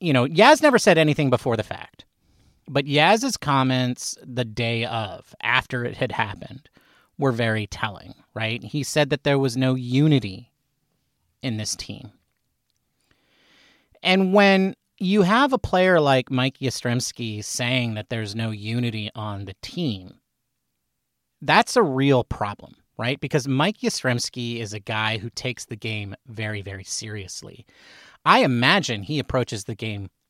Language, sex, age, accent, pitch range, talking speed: English, male, 30-49, American, 115-190 Hz, 145 wpm